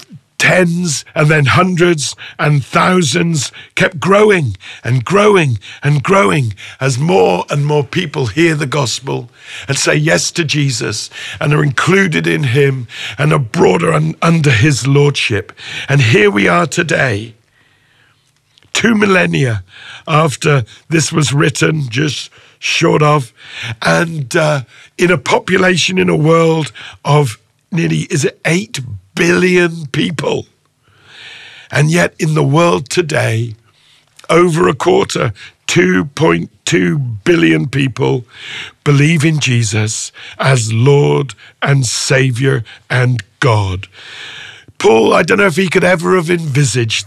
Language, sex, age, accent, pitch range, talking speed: English, male, 50-69, British, 125-165 Hz, 125 wpm